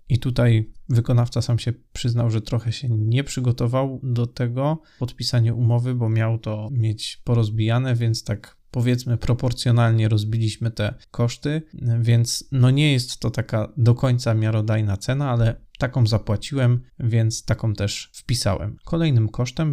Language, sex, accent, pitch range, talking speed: Polish, male, native, 110-130 Hz, 140 wpm